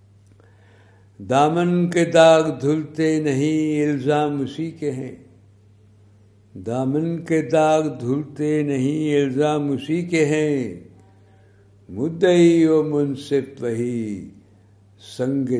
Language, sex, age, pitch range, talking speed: Urdu, male, 60-79, 100-145 Hz, 90 wpm